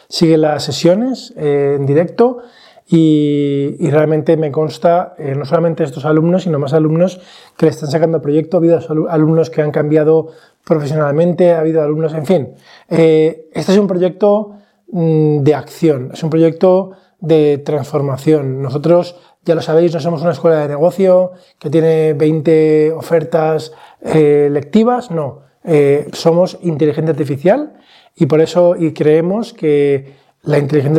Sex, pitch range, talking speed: male, 150-175 Hz, 150 wpm